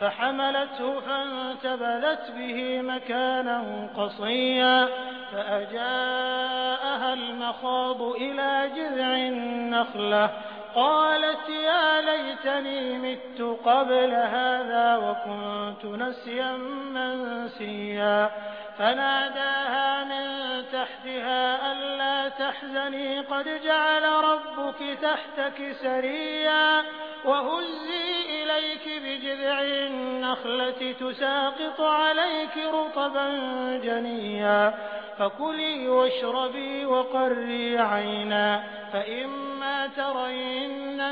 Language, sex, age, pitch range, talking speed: Hindi, male, 30-49, 240-275 Hz, 65 wpm